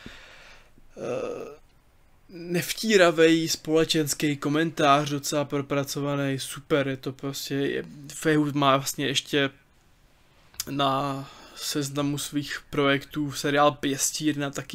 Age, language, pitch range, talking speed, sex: 20-39, Czech, 140-160 Hz, 80 wpm, male